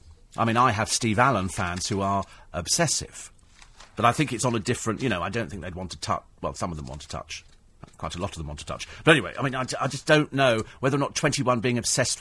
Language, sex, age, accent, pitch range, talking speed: English, male, 40-59, British, 100-140 Hz, 275 wpm